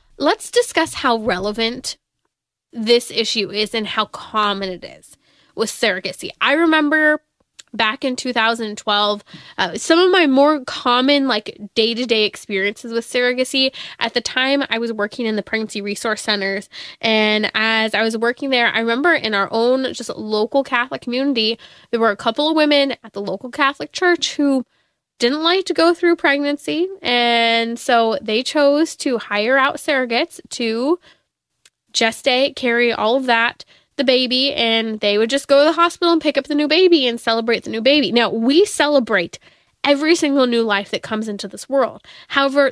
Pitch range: 220-285 Hz